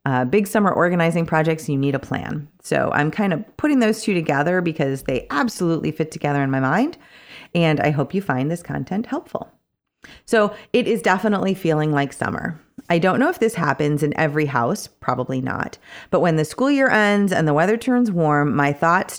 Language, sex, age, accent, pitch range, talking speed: English, female, 30-49, American, 150-230 Hz, 200 wpm